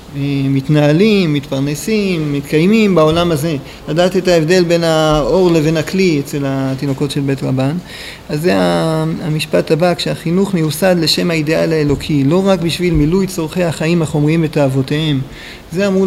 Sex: male